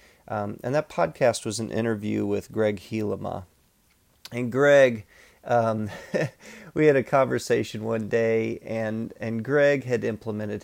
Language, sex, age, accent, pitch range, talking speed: English, male, 40-59, American, 105-120 Hz, 135 wpm